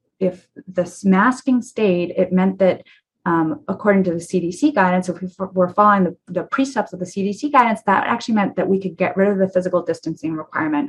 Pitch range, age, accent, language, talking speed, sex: 180-240 Hz, 30-49, American, English, 210 wpm, female